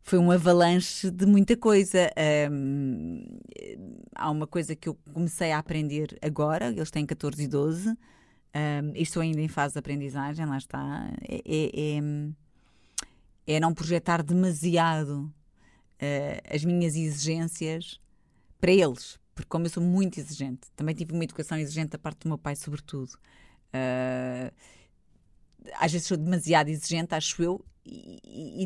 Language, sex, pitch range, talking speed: Portuguese, female, 145-180 Hz, 135 wpm